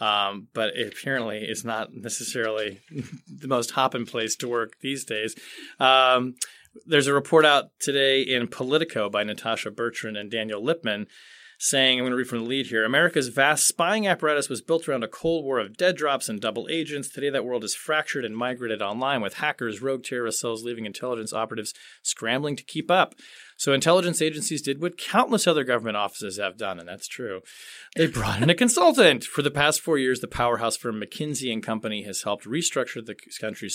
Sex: male